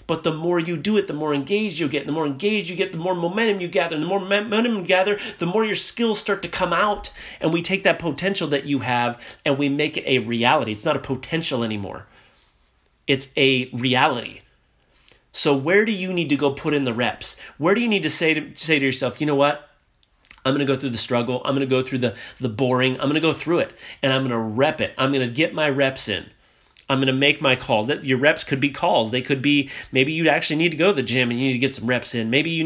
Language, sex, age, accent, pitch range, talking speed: English, male, 30-49, American, 135-175 Hz, 265 wpm